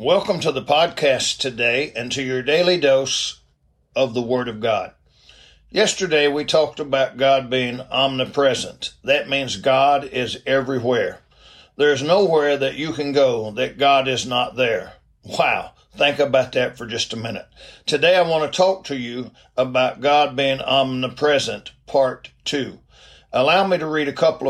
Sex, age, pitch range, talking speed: male, 60-79, 125-155 Hz, 160 wpm